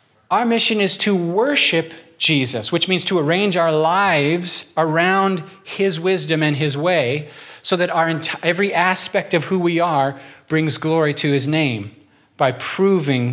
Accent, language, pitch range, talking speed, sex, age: American, English, 135-175 Hz, 160 wpm, male, 40-59